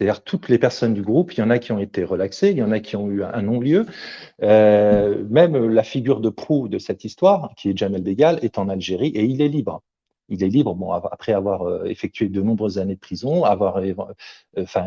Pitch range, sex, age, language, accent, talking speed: 100-130 Hz, male, 40-59, French, French, 230 wpm